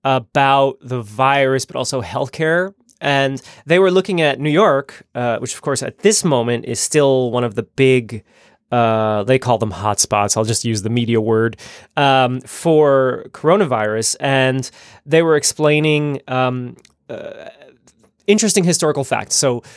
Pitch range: 115-150 Hz